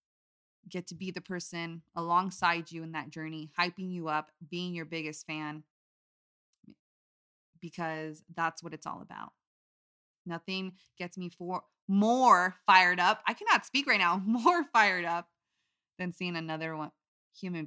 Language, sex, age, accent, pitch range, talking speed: English, female, 20-39, American, 160-190 Hz, 145 wpm